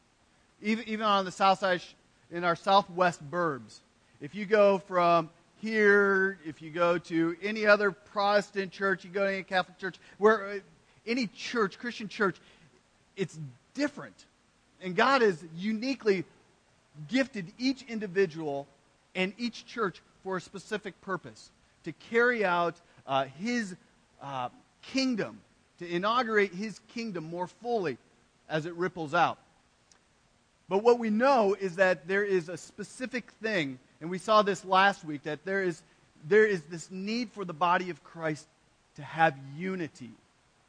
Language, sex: English, male